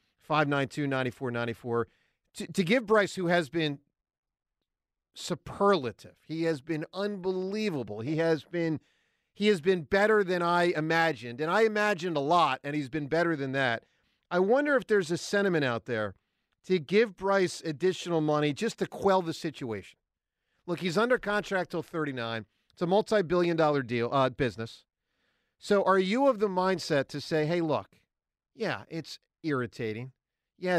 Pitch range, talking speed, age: 135-185 Hz, 170 wpm, 40-59